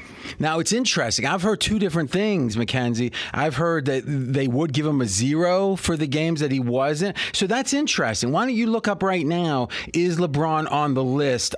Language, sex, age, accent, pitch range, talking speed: English, male, 30-49, American, 115-155 Hz, 200 wpm